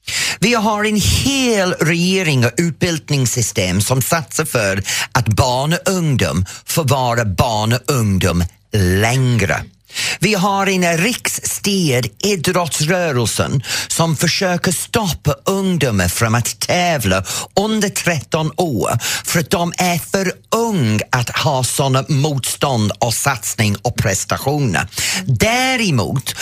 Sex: male